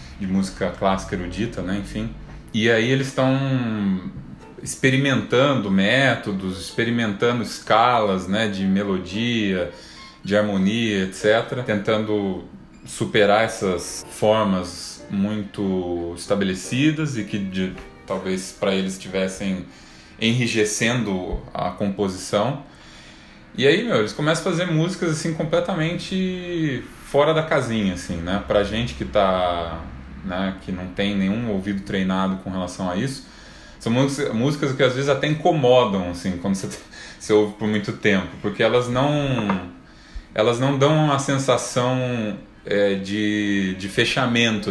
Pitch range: 95-125 Hz